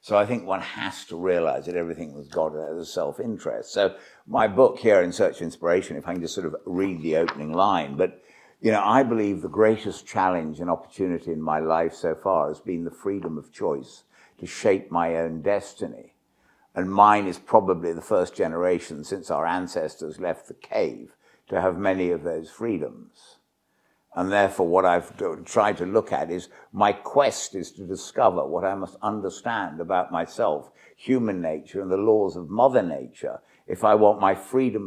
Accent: British